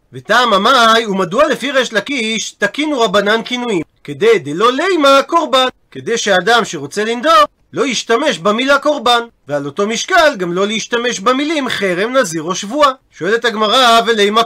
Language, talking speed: Hebrew, 135 wpm